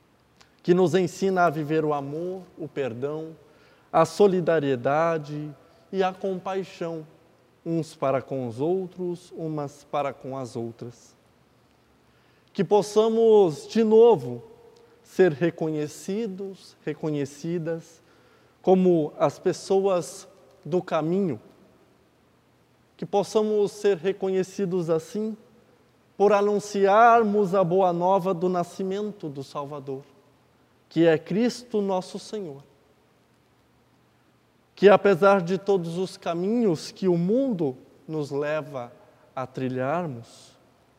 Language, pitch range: Portuguese, 145-200 Hz